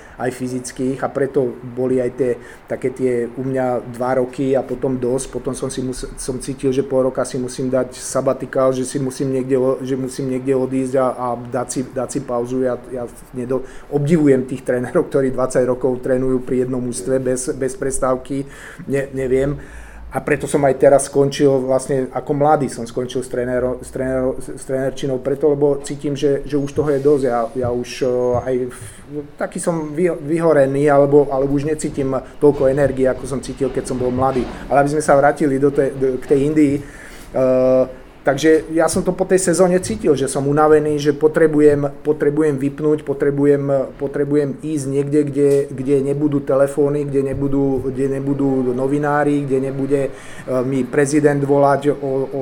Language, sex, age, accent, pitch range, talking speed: Czech, male, 30-49, native, 130-145 Hz, 175 wpm